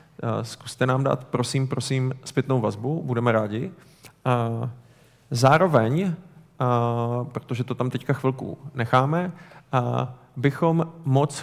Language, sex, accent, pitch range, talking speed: Czech, male, native, 120-140 Hz, 95 wpm